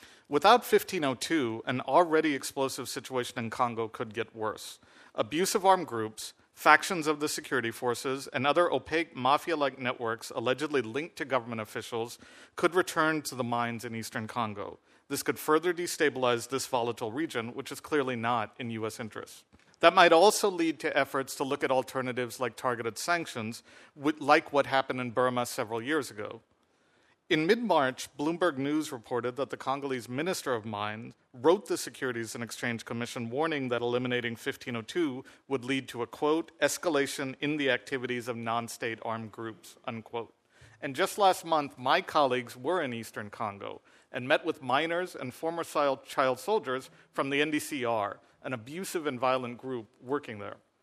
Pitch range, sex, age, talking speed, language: 120-150 Hz, male, 50-69, 160 wpm, English